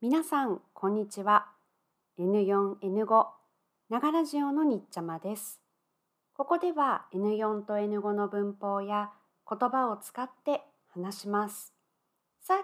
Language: Japanese